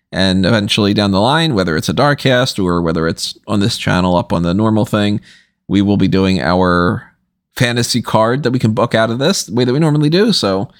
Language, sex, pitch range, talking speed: English, male, 95-140 Hz, 235 wpm